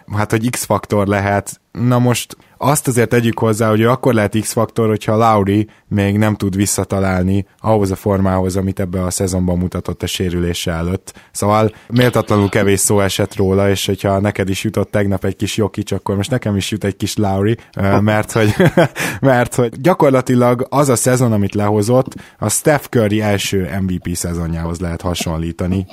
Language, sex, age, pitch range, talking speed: Hungarian, male, 20-39, 95-110 Hz, 165 wpm